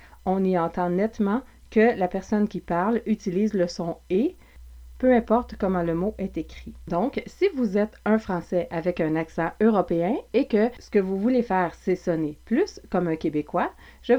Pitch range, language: 170-230 Hz, French